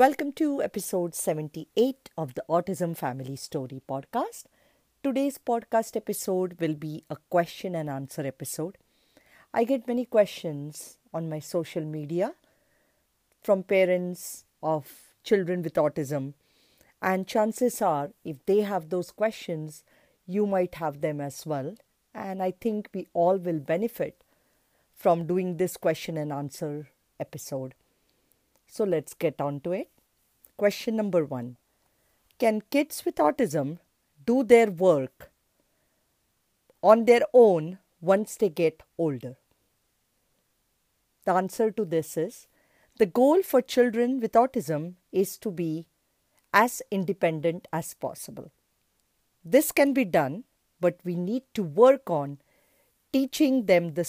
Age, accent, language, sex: 50-69, Indian, English, female